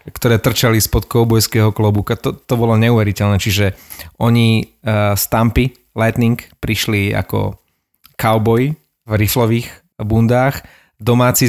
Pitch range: 105-125 Hz